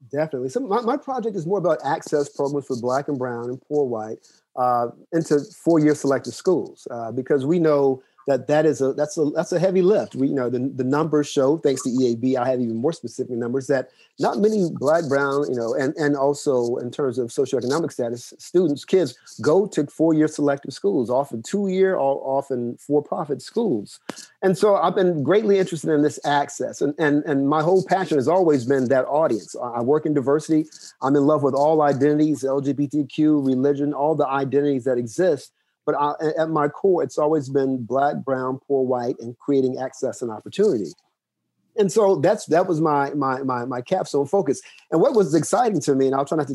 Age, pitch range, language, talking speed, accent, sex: 40-59, 135-175 Hz, English, 200 wpm, American, male